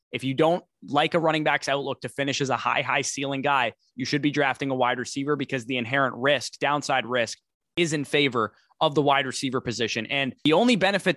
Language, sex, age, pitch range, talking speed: English, male, 20-39, 120-140 Hz, 220 wpm